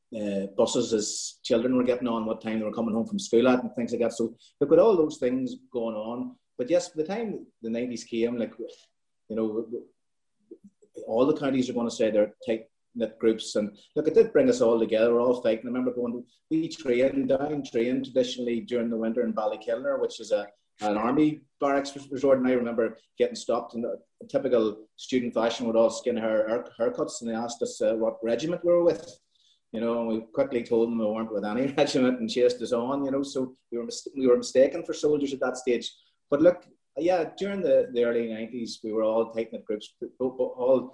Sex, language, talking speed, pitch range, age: male, English, 225 wpm, 115-140 Hz, 30-49